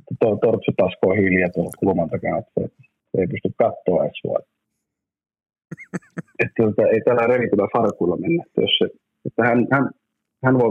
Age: 30-49